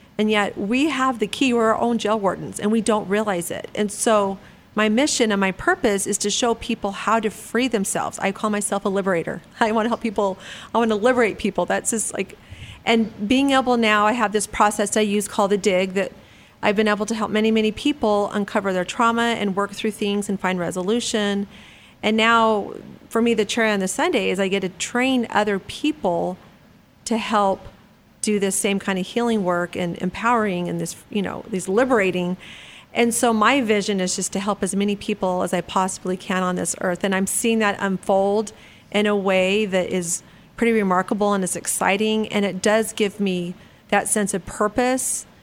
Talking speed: 205 wpm